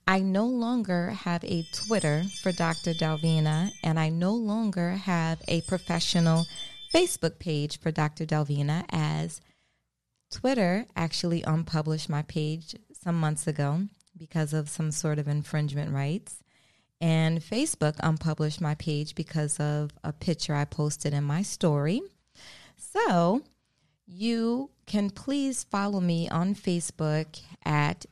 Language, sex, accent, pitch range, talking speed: English, female, American, 155-180 Hz, 130 wpm